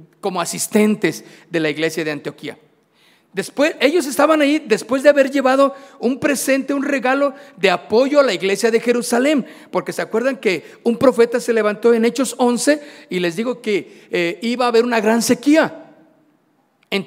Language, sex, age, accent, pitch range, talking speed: Spanish, male, 50-69, Mexican, 210-280 Hz, 170 wpm